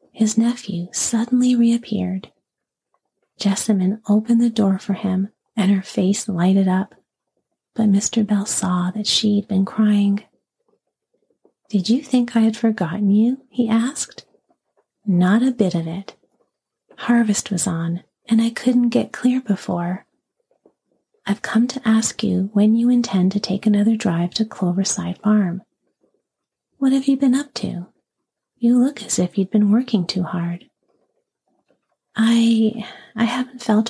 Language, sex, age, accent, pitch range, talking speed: English, female, 40-59, American, 190-235 Hz, 140 wpm